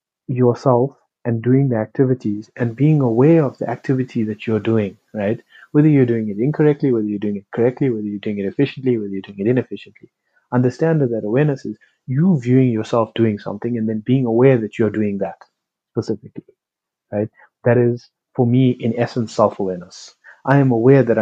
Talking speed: 185 wpm